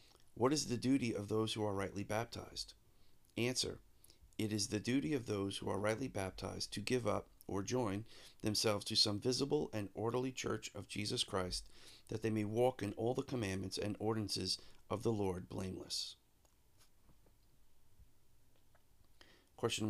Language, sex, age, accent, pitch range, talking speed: English, male, 40-59, American, 100-120 Hz, 155 wpm